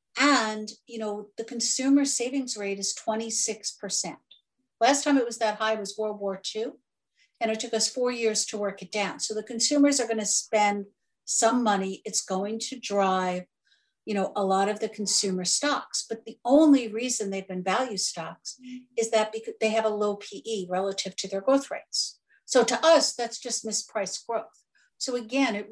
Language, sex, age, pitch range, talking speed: English, female, 60-79, 195-235 Hz, 185 wpm